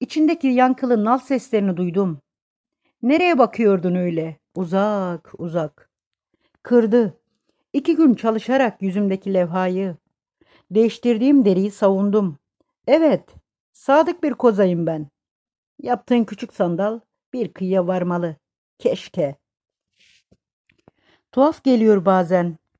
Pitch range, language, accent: 185-255 Hz, Turkish, native